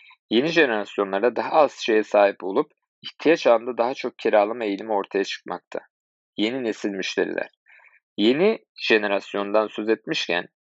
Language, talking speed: Turkish, 125 wpm